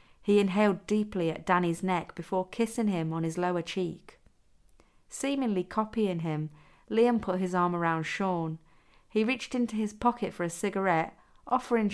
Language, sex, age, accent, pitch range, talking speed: English, female, 40-59, British, 165-220 Hz, 155 wpm